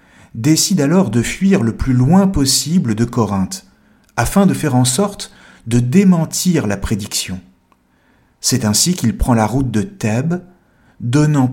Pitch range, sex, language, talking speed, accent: 110-160 Hz, male, French, 145 wpm, French